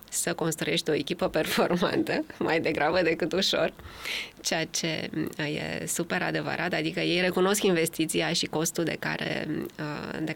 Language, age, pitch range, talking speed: English, 20-39, 160-190 Hz, 135 wpm